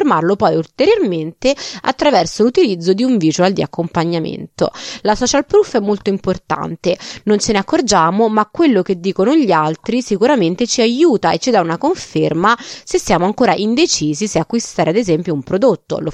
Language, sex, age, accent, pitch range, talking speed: Italian, female, 20-39, native, 170-240 Hz, 165 wpm